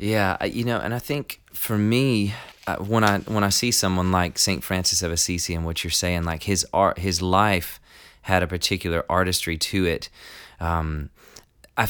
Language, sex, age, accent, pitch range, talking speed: English, male, 30-49, American, 90-105 Hz, 180 wpm